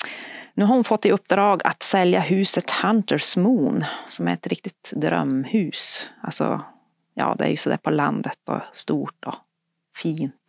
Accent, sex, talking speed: native, female, 160 wpm